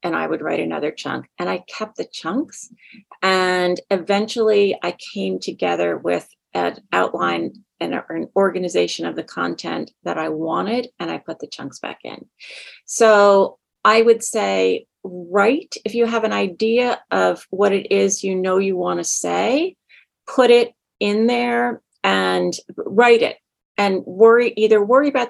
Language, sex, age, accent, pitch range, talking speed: English, female, 30-49, American, 175-230 Hz, 160 wpm